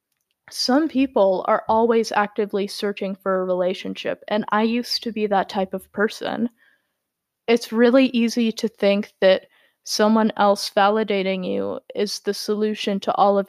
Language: English